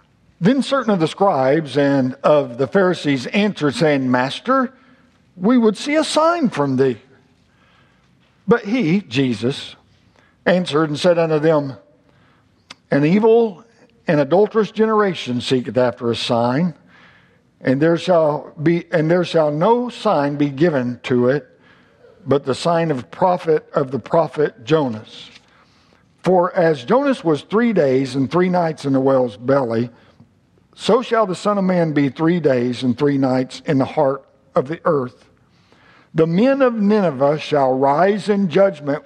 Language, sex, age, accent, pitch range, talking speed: English, male, 60-79, American, 130-180 Hz, 150 wpm